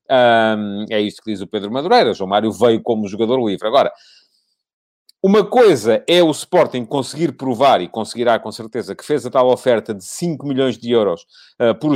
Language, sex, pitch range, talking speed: Portuguese, male, 120-155 Hz, 190 wpm